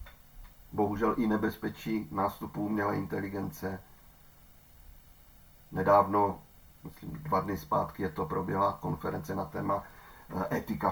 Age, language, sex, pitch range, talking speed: 40-59, Czech, male, 95-145 Hz, 100 wpm